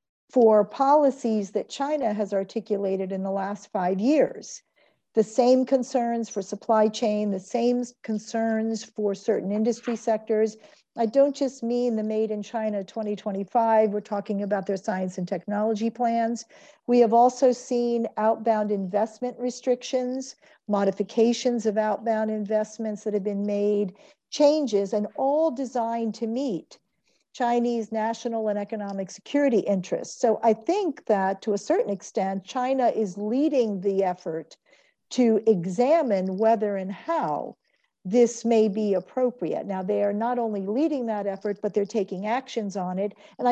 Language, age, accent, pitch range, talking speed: English, 50-69, American, 205-245 Hz, 145 wpm